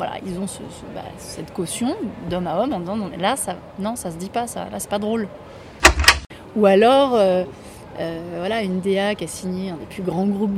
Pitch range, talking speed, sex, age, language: 190-235 Hz, 225 wpm, female, 20-39, French